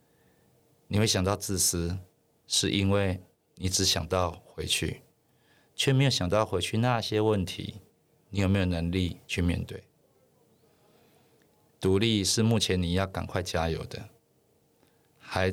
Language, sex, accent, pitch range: Chinese, male, native, 90-105 Hz